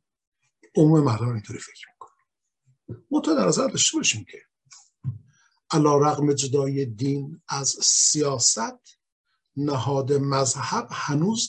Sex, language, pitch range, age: male, Persian, 125-170 Hz, 50-69